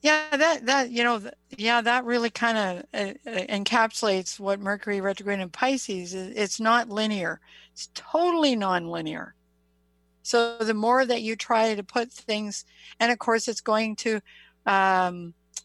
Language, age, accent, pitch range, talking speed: English, 60-79, American, 195-235 Hz, 155 wpm